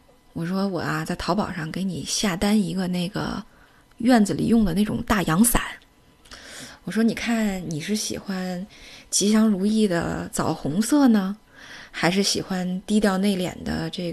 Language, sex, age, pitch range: Chinese, female, 20-39, 185-235 Hz